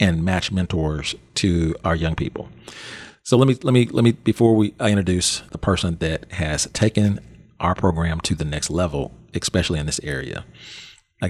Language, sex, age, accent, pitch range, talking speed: English, male, 40-59, American, 85-110 Hz, 180 wpm